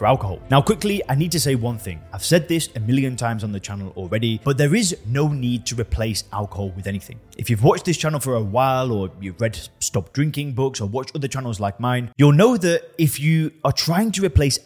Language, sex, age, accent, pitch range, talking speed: English, male, 20-39, British, 110-150 Hz, 240 wpm